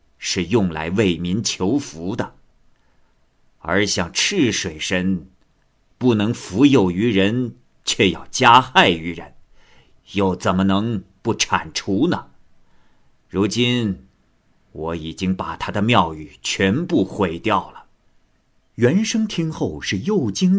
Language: Chinese